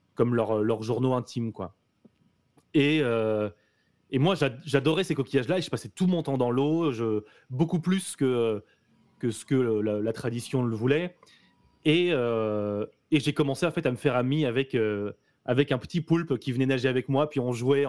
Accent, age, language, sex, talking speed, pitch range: French, 20-39, French, male, 200 wpm, 115-145 Hz